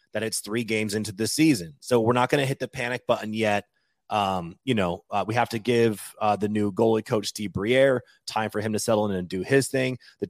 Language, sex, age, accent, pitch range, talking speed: English, male, 30-49, American, 110-135 Hz, 250 wpm